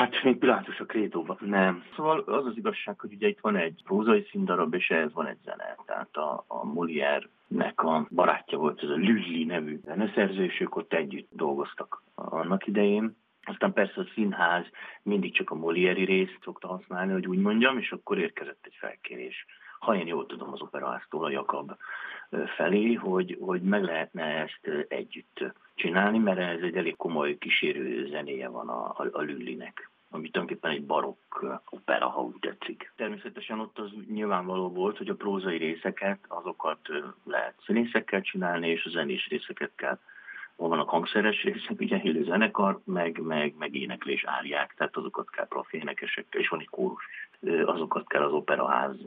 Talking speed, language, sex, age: 165 wpm, Hungarian, male, 50-69